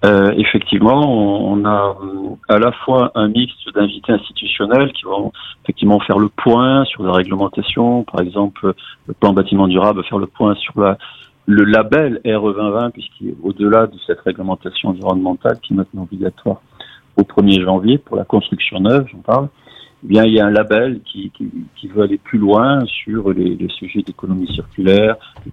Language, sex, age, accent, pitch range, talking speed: French, male, 50-69, French, 95-115 Hz, 180 wpm